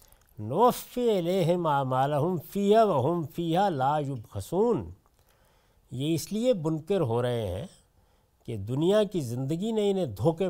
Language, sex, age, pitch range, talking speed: Urdu, male, 50-69, 110-175 Hz, 130 wpm